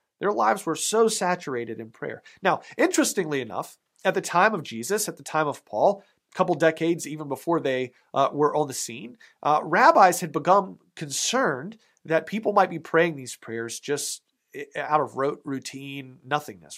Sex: male